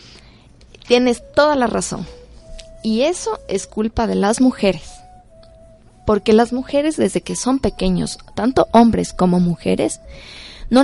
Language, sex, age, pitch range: Spanish, female, 20-39, 185-250 Hz